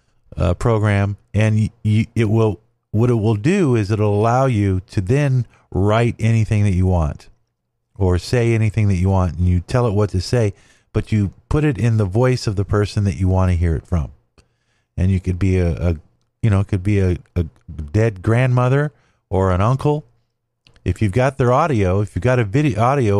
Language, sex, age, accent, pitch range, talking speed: English, male, 40-59, American, 100-125 Hz, 205 wpm